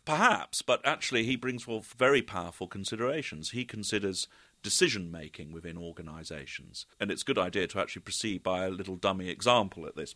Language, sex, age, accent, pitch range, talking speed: English, male, 40-59, British, 90-110 Hz, 170 wpm